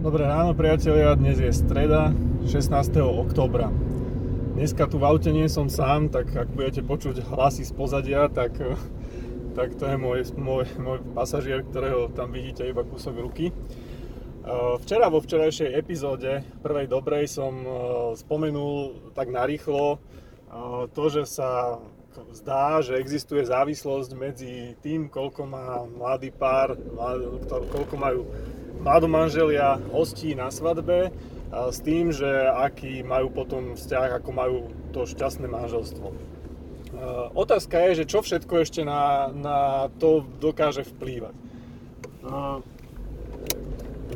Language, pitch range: Slovak, 125-150 Hz